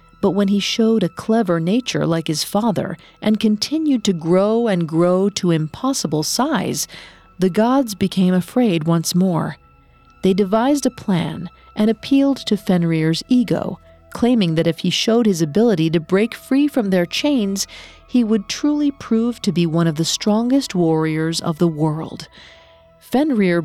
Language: English